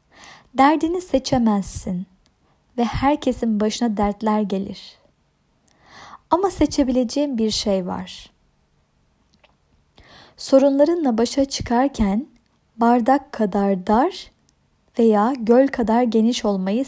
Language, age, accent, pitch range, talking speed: Turkish, 30-49, native, 205-270 Hz, 80 wpm